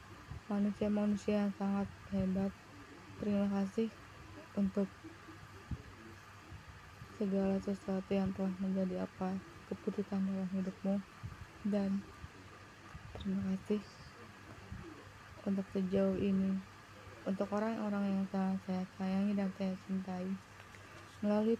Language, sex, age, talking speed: Indonesian, female, 20-39, 90 wpm